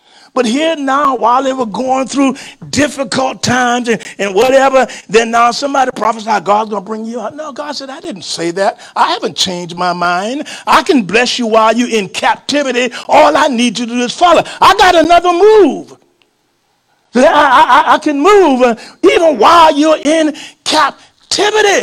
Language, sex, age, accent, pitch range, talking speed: English, male, 50-69, American, 230-320 Hz, 180 wpm